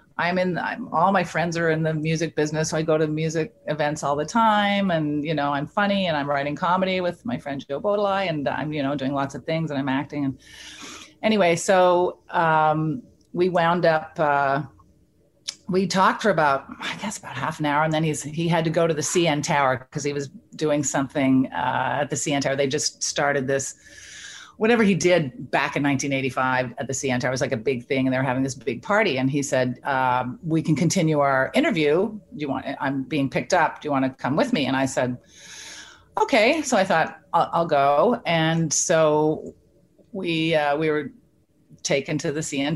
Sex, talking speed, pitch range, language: female, 215 wpm, 140-170 Hz, English